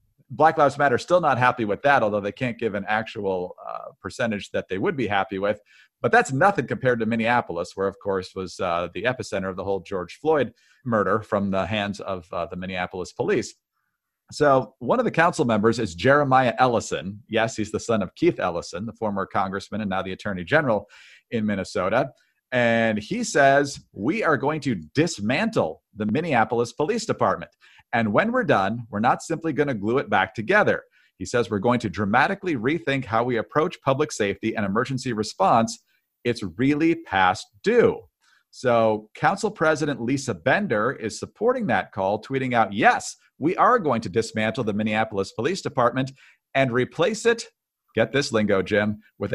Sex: male